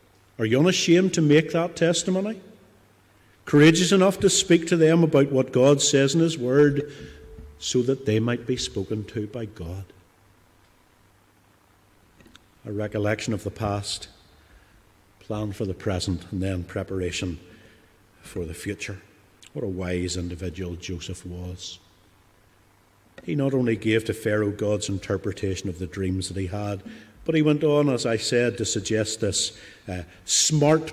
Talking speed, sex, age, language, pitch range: 145 wpm, male, 50-69, English, 95-130 Hz